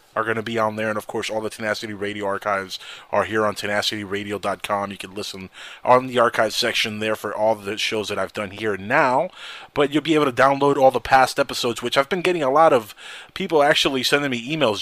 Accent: American